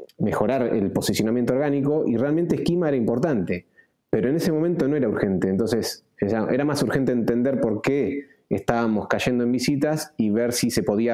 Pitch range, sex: 110-135 Hz, male